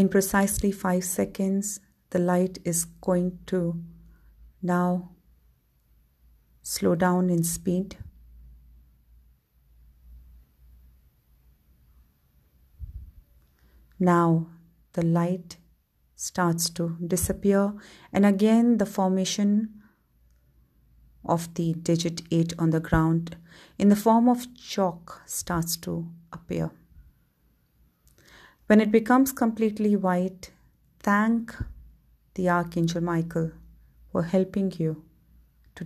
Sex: female